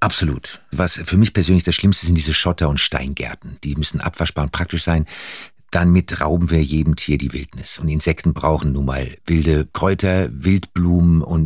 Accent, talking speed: German, 180 wpm